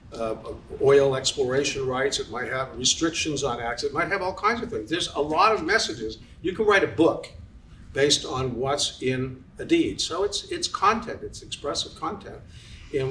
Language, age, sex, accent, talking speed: English, 60-79, male, American, 190 wpm